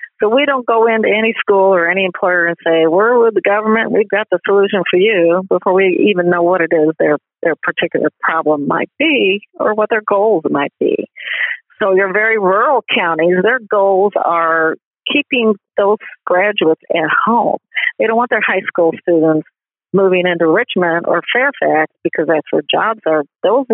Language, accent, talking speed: English, American, 180 wpm